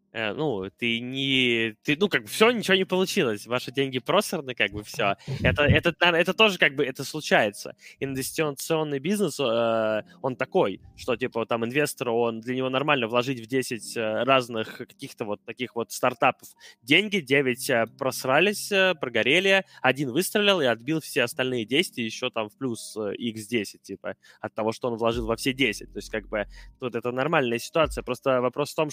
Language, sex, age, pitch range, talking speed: Russian, male, 20-39, 125-160 Hz, 175 wpm